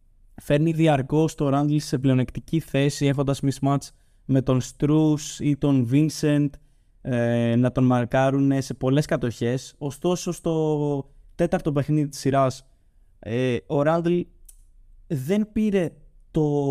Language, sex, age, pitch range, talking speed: Greek, male, 20-39, 120-155 Hz, 120 wpm